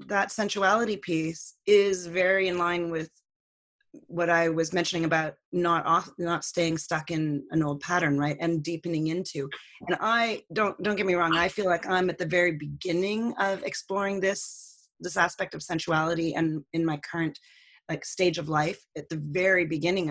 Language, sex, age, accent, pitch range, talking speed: English, female, 30-49, American, 160-195 Hz, 180 wpm